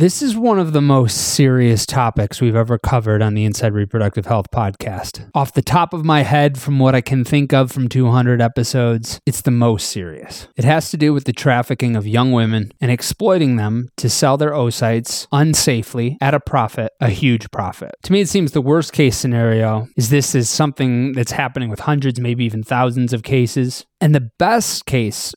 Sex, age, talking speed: male, 20-39, 200 wpm